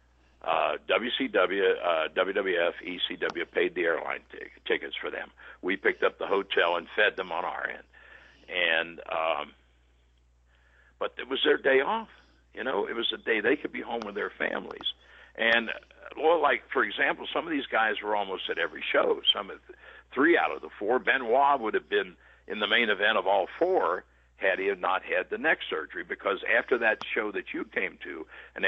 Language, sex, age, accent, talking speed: English, male, 60-79, American, 200 wpm